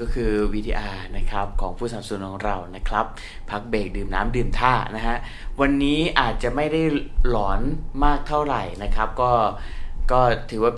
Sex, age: male, 20-39